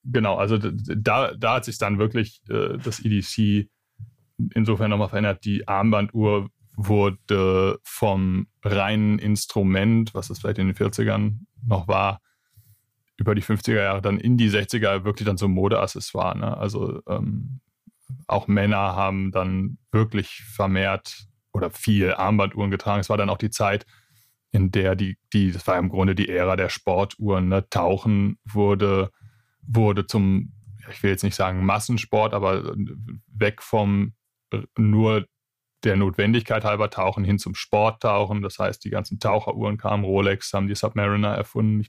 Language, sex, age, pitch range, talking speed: German, male, 30-49, 100-110 Hz, 150 wpm